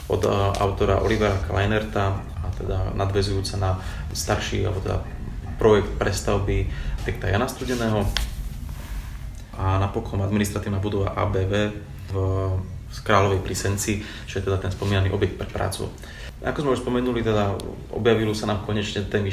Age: 20-39